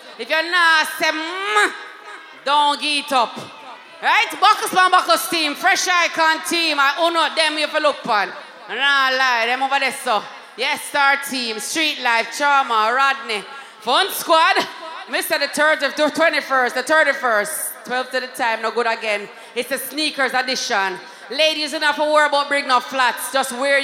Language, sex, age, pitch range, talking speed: English, female, 30-49, 250-310 Hz, 170 wpm